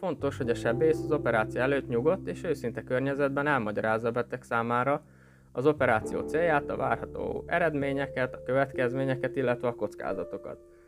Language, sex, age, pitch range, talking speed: Hungarian, male, 20-39, 115-140 Hz, 145 wpm